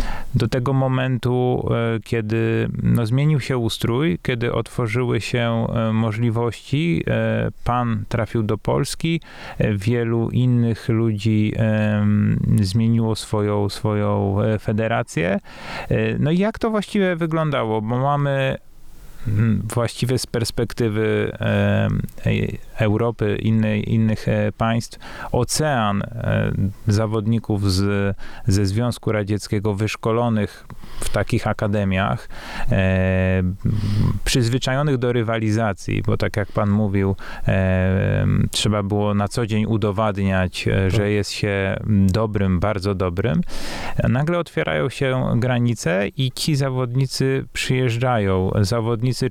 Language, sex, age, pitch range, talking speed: Polish, male, 30-49, 105-120 Hz, 90 wpm